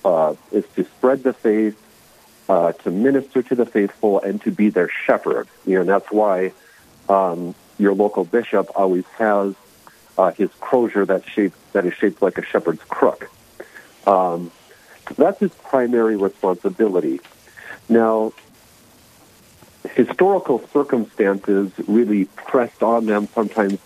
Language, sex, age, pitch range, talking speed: English, male, 50-69, 100-120 Hz, 125 wpm